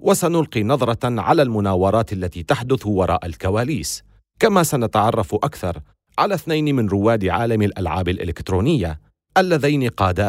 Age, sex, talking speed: 40-59, male, 115 wpm